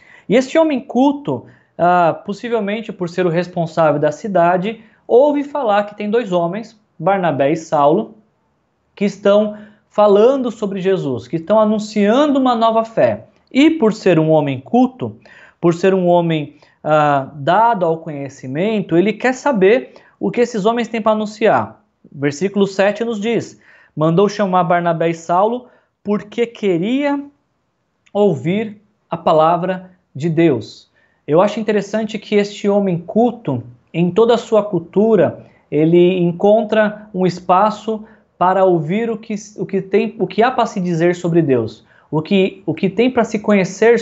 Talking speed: 145 wpm